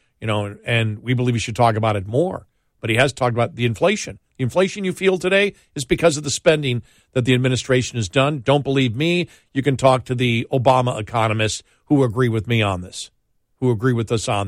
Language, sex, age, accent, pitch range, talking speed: English, male, 50-69, American, 115-150 Hz, 225 wpm